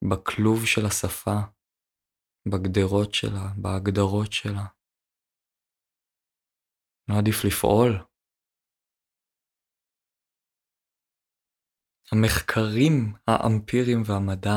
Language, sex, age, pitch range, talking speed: Hebrew, male, 20-39, 95-105 Hz, 55 wpm